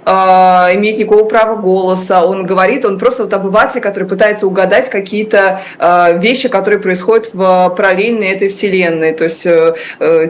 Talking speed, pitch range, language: 135 wpm, 180-210 Hz, Russian